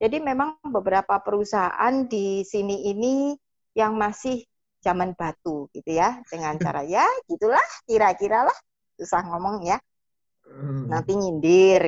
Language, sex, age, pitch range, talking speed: Indonesian, female, 30-49, 170-225 Hz, 115 wpm